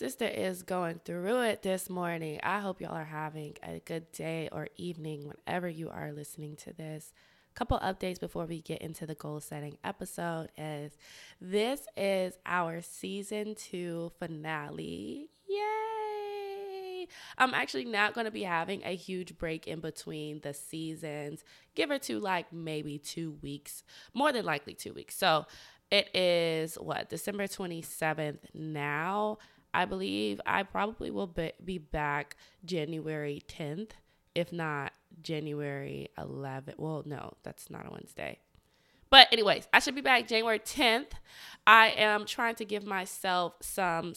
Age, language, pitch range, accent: 20-39, English, 150-205 Hz, American